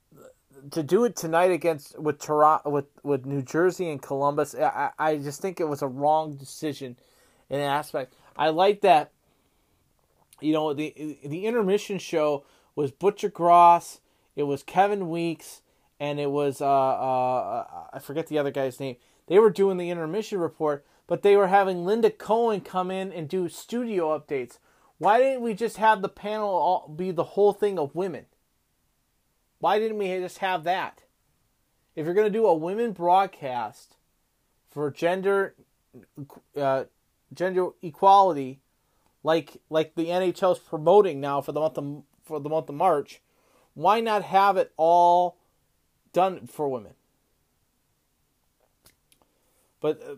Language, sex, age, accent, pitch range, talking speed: English, male, 30-49, American, 145-195 Hz, 155 wpm